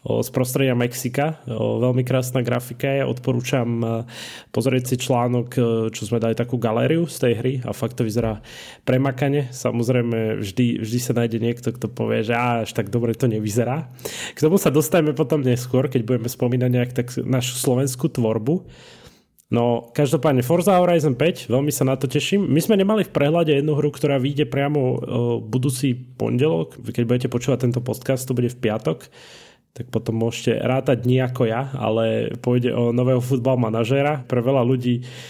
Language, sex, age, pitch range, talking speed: Slovak, male, 20-39, 120-135 Hz, 165 wpm